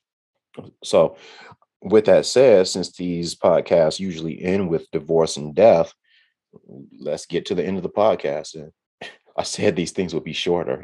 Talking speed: 160 wpm